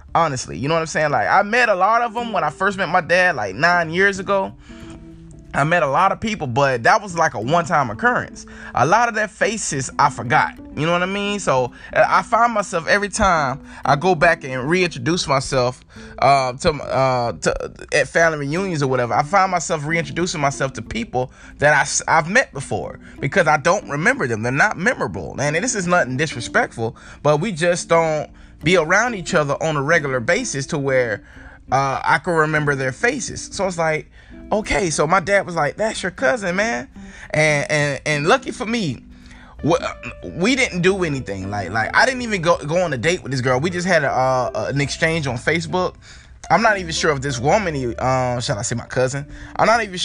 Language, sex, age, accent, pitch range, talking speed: English, male, 20-39, American, 130-180 Hz, 210 wpm